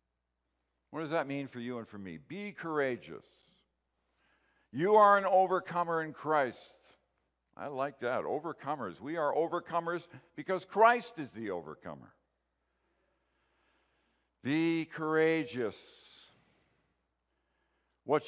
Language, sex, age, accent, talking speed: English, male, 60-79, American, 105 wpm